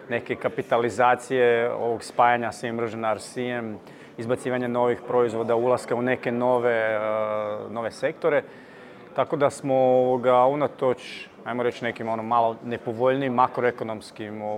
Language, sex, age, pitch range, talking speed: Croatian, male, 30-49, 115-130 Hz, 120 wpm